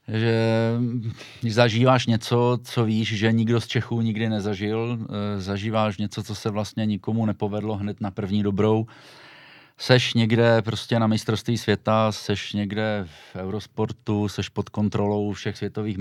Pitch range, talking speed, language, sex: 95-105 Hz, 140 wpm, Czech, male